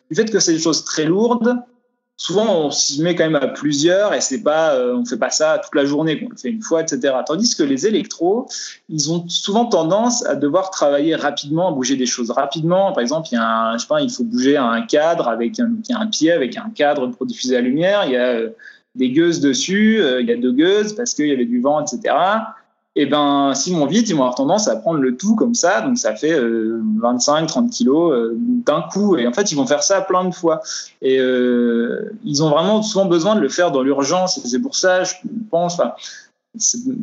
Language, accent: French, French